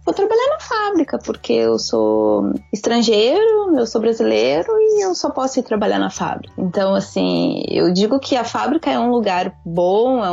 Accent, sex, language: Brazilian, female, Portuguese